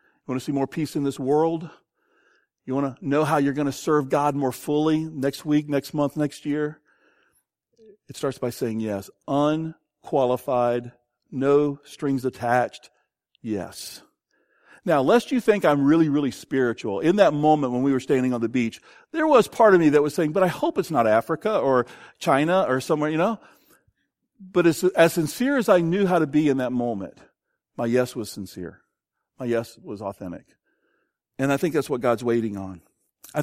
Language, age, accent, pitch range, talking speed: English, 50-69, American, 120-150 Hz, 190 wpm